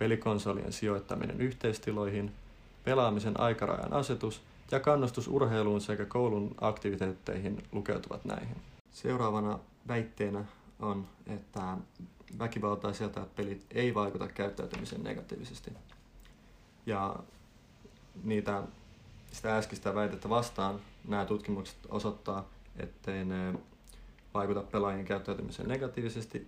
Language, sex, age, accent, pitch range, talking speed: Finnish, male, 30-49, native, 100-115 Hz, 90 wpm